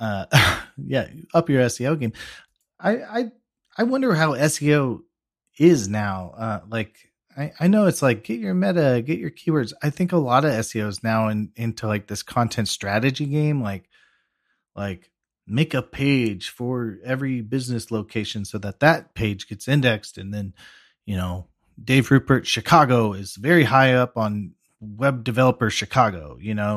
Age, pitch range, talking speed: 30-49, 110-140 Hz, 165 wpm